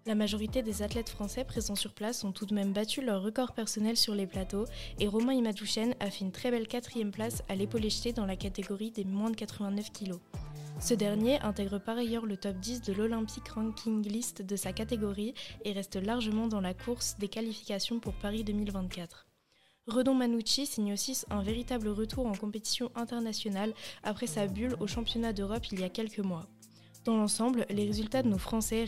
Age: 10-29